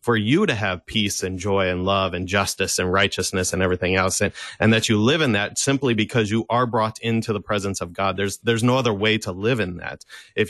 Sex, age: male, 30-49